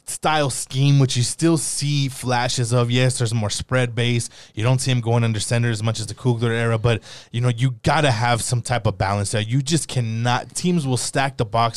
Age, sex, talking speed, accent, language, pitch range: 20-39, male, 230 wpm, American, English, 110-125 Hz